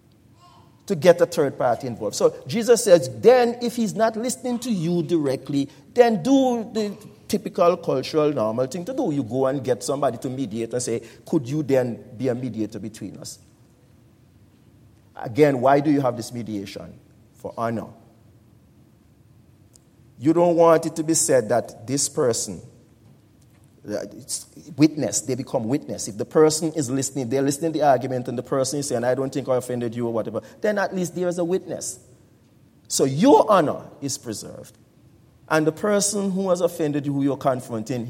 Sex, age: male, 40-59